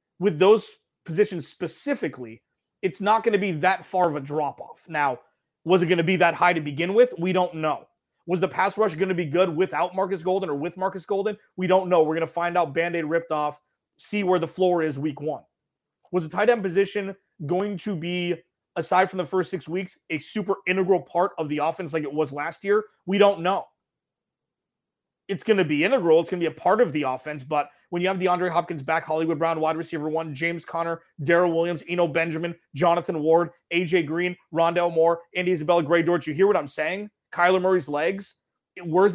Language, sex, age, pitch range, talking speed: English, male, 30-49, 160-185 Hz, 215 wpm